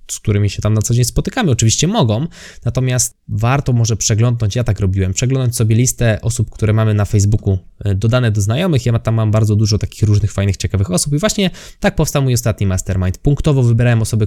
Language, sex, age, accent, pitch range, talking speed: Polish, male, 20-39, native, 105-135 Hz, 200 wpm